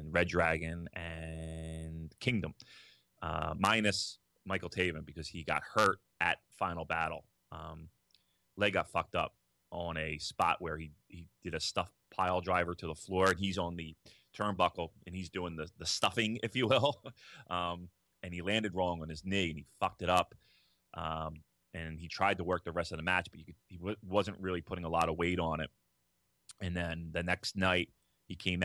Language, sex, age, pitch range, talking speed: English, male, 30-49, 85-95 Hz, 190 wpm